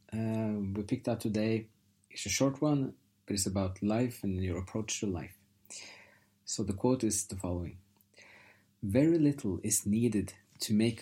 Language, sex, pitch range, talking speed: English, male, 100-110 Hz, 165 wpm